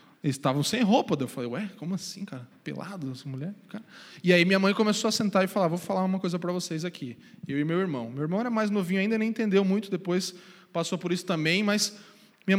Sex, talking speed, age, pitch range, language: male, 245 wpm, 20-39, 175-225 Hz, Portuguese